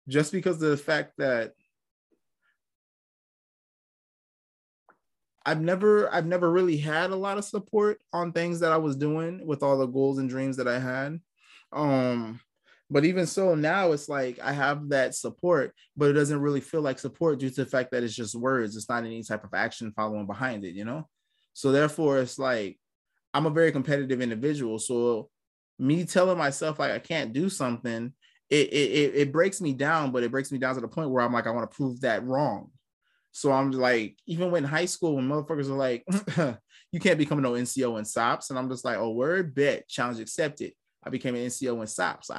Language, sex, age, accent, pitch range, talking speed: English, male, 20-39, American, 120-155 Hz, 205 wpm